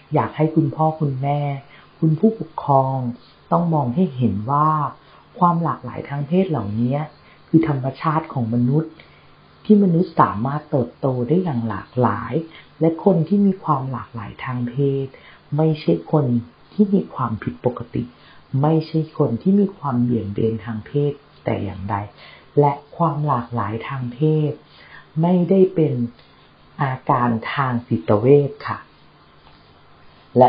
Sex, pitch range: female, 120-160 Hz